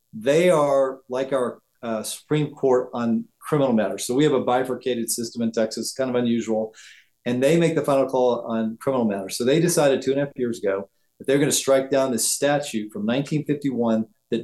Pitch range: 120-150 Hz